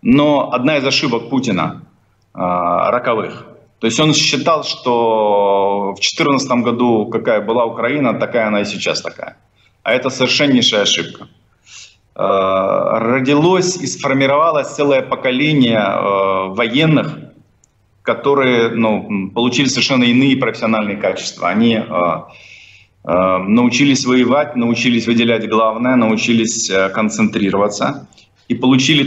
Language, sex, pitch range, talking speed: English, male, 105-135 Hz, 110 wpm